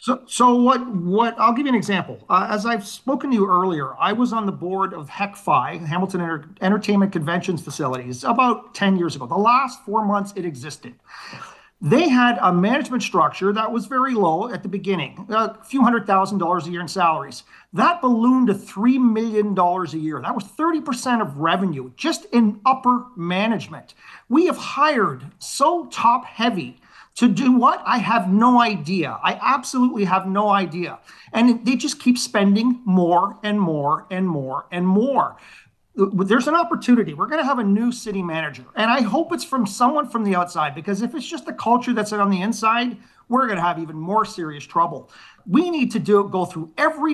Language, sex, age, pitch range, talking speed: English, male, 40-59, 180-245 Hz, 190 wpm